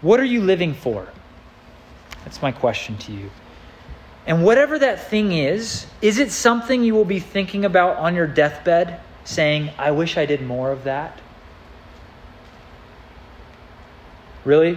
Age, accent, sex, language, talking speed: 30-49, American, male, English, 140 wpm